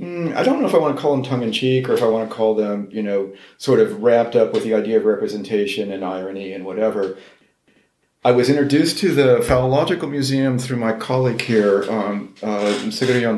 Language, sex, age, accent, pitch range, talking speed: English, male, 40-59, American, 100-135 Hz, 200 wpm